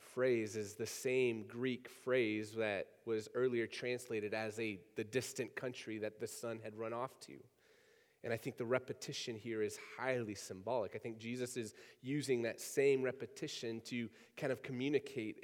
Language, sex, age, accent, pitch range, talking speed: English, male, 30-49, American, 125-210 Hz, 165 wpm